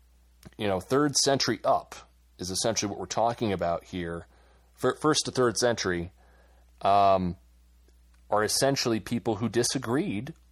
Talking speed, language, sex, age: 125 wpm, English, male, 30-49